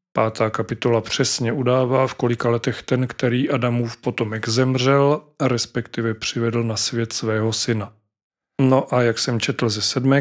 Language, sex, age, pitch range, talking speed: Czech, male, 40-59, 115-135 Hz, 145 wpm